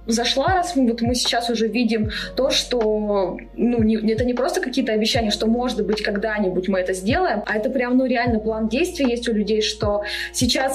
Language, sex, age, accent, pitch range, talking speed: Russian, female, 20-39, native, 215-265 Hz, 190 wpm